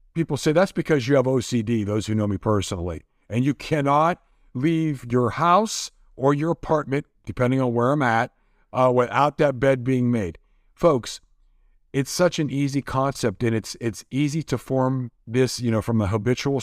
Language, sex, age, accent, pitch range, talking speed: English, male, 50-69, American, 110-145 Hz, 180 wpm